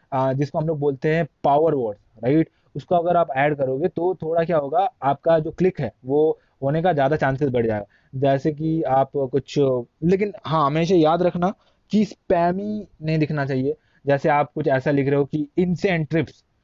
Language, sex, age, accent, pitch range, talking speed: Hindi, male, 20-39, native, 130-180 Hz, 185 wpm